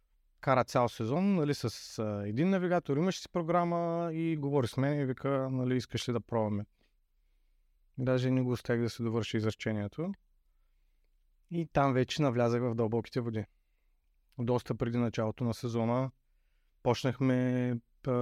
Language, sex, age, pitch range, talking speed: Bulgarian, male, 30-49, 115-135 Hz, 140 wpm